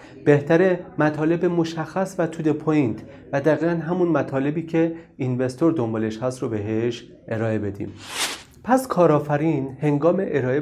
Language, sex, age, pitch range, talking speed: Persian, male, 30-49, 115-155 Hz, 125 wpm